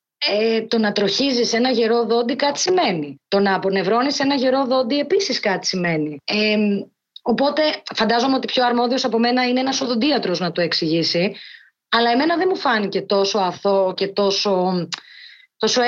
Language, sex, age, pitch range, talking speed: Greek, female, 20-39, 195-245 Hz, 160 wpm